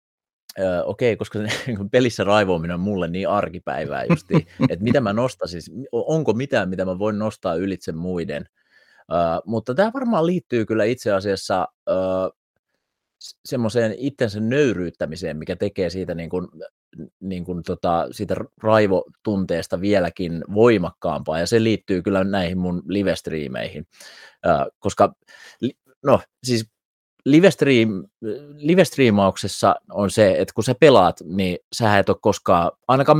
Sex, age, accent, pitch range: male, 30-49, native, 90-115 Hz